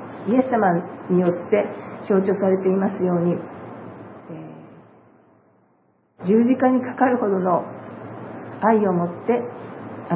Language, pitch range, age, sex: Japanese, 190-230 Hz, 50-69, female